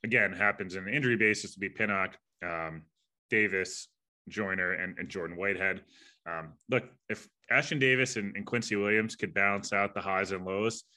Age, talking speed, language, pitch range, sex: 20-39, 175 wpm, English, 100-115 Hz, male